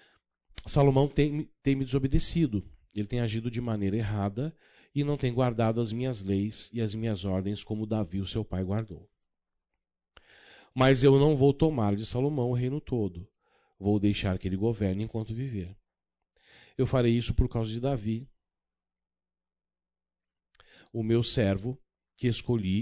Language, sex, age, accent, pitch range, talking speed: Portuguese, male, 40-59, Brazilian, 95-120 Hz, 150 wpm